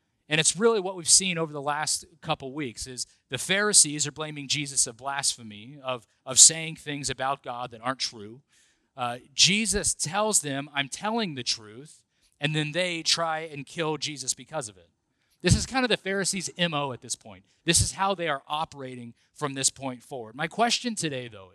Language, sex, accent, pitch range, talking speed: English, male, American, 130-180 Hz, 195 wpm